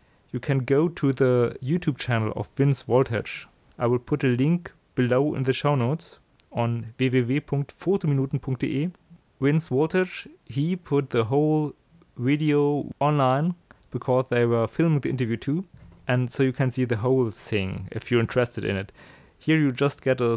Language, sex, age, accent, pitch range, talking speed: German, male, 30-49, German, 120-145 Hz, 160 wpm